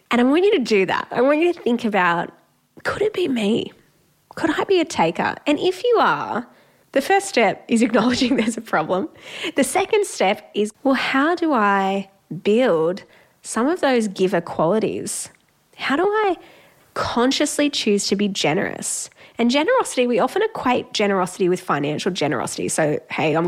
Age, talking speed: 10-29, 175 wpm